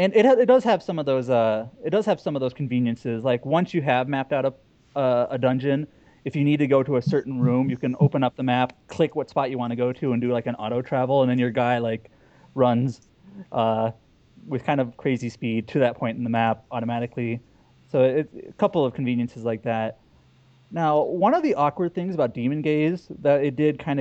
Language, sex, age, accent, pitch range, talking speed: English, male, 30-49, American, 120-150 Hz, 240 wpm